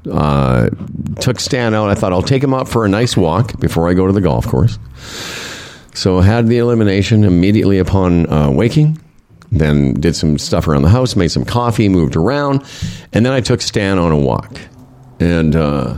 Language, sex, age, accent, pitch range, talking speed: English, male, 50-69, American, 90-120 Hz, 190 wpm